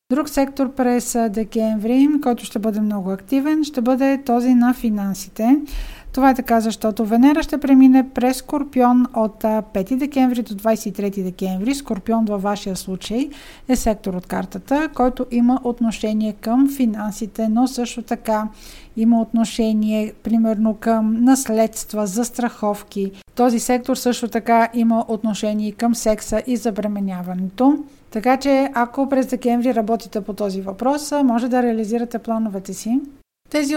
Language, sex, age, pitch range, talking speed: Bulgarian, female, 50-69, 220-260 Hz, 135 wpm